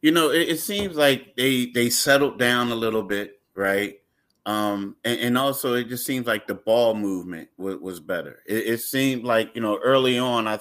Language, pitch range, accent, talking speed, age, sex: English, 110-125 Hz, American, 210 wpm, 30-49, male